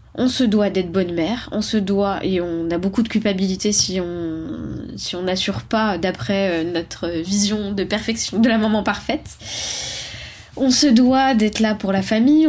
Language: French